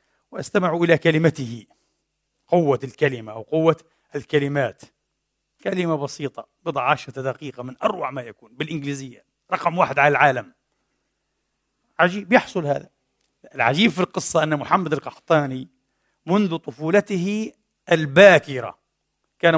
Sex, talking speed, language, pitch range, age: male, 105 wpm, Arabic, 140-180 Hz, 50-69